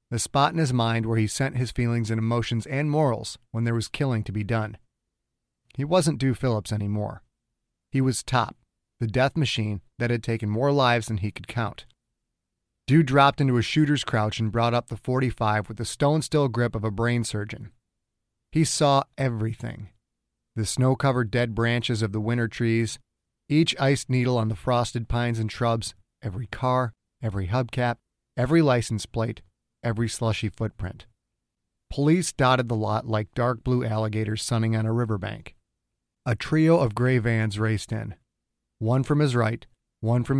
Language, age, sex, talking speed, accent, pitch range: English, 30-49, male, 170 wpm, American, 110-130 Hz